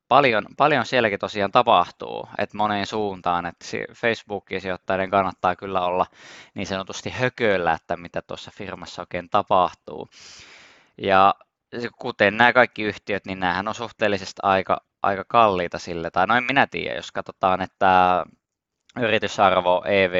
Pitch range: 90-100 Hz